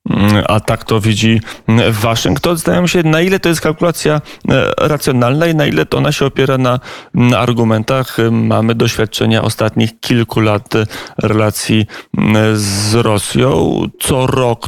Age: 30-49